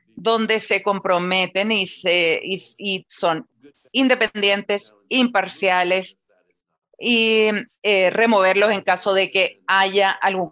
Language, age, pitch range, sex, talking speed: Spanish, 40-59, 180-220 Hz, female, 110 wpm